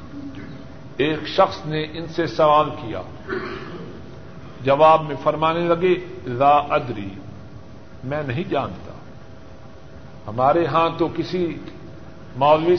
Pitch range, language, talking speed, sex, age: 135-195 Hz, Urdu, 100 wpm, male, 50-69